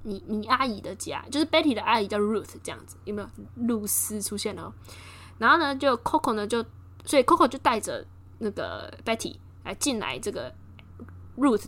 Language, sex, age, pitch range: Chinese, female, 10-29, 195-260 Hz